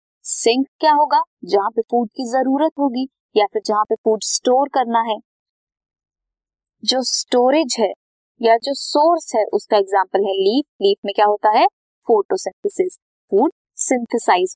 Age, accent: 20-39, native